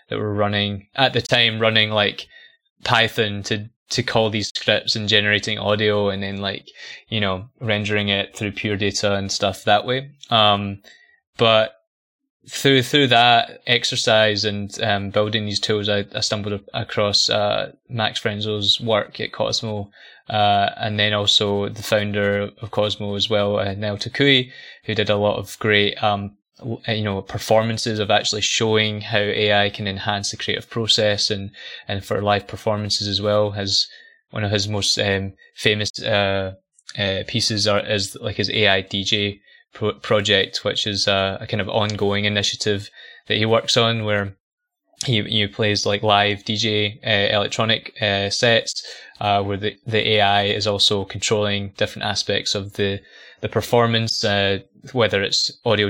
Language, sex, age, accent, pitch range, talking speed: English, male, 20-39, British, 100-115 Hz, 160 wpm